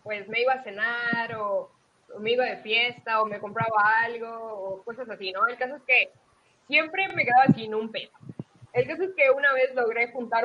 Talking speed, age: 210 wpm, 20-39